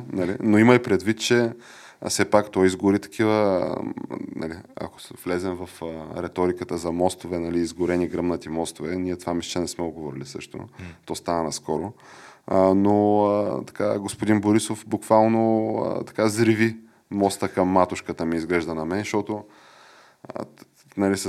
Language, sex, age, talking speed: Bulgarian, male, 20-39, 130 wpm